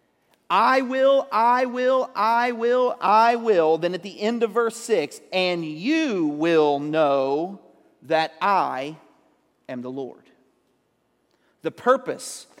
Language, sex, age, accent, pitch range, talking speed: English, male, 40-59, American, 160-235 Hz, 125 wpm